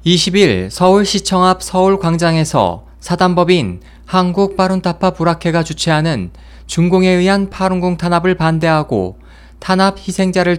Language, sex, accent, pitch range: Korean, male, native, 145-185 Hz